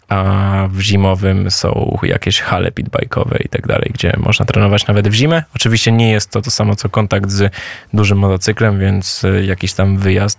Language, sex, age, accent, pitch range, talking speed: Polish, male, 20-39, native, 100-115 Hz, 180 wpm